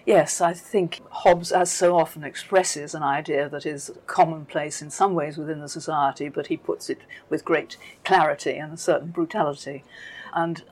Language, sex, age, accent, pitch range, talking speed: English, female, 50-69, British, 155-180 Hz, 175 wpm